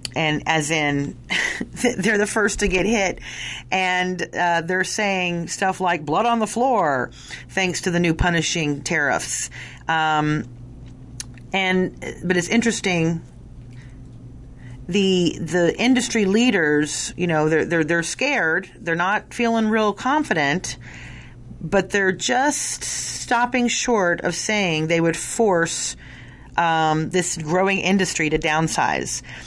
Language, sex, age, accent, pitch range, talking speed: English, female, 40-59, American, 145-185 Hz, 125 wpm